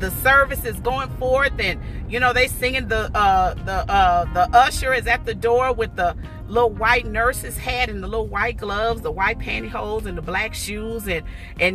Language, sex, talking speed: English, female, 205 wpm